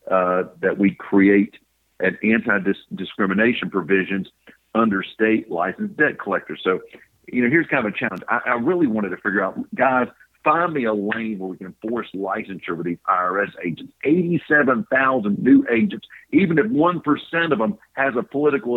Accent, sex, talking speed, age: American, male, 165 wpm, 50-69